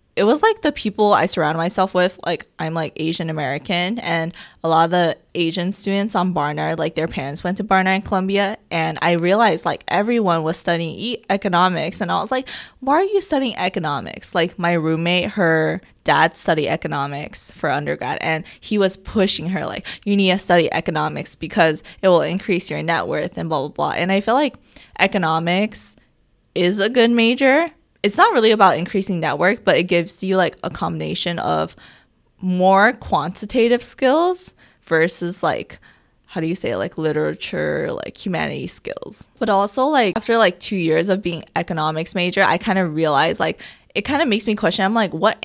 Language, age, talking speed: English, 20-39, 185 wpm